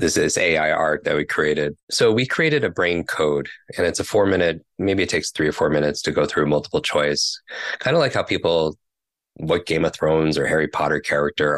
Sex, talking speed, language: male, 225 wpm, English